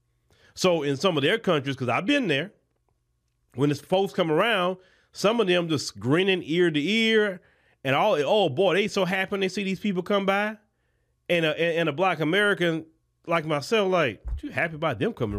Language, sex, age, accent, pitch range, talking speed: English, male, 30-49, American, 150-210 Hz, 195 wpm